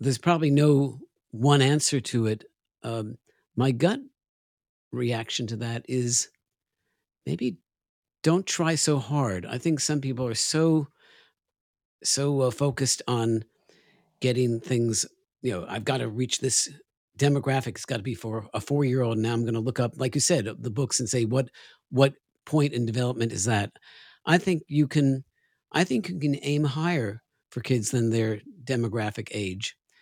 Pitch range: 115-140 Hz